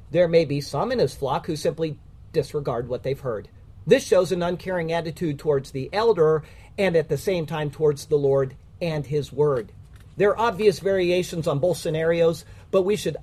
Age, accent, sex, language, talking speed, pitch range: 50-69, American, male, English, 190 wpm, 145-195 Hz